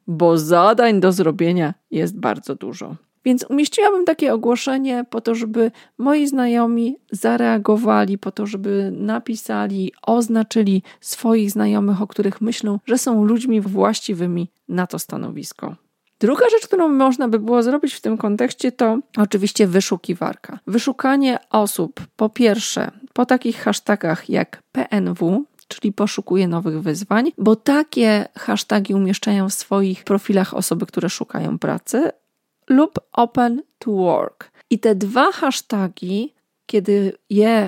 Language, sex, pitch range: Polish, female, 195-240 Hz